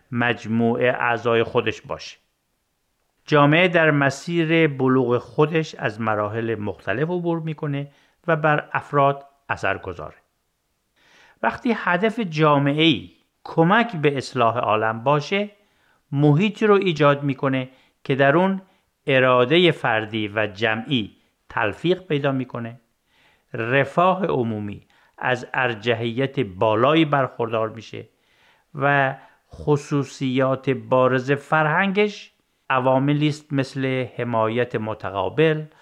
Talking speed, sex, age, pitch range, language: 95 wpm, male, 50-69, 110-155 Hz, Persian